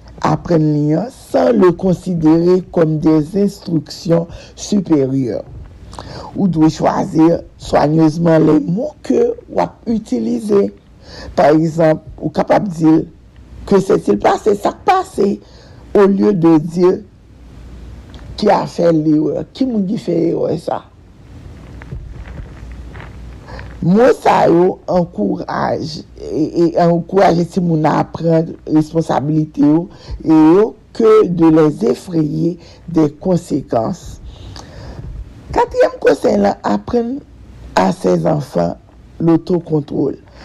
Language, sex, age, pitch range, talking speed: French, male, 60-79, 155-195 Hz, 95 wpm